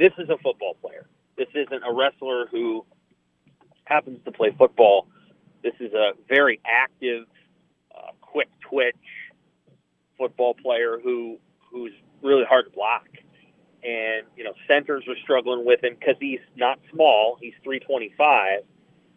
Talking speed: 145 wpm